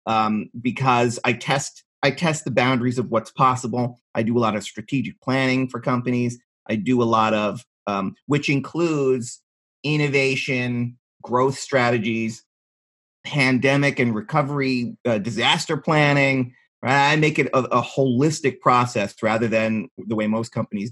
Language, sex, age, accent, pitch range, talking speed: English, male, 30-49, American, 115-140 Hz, 145 wpm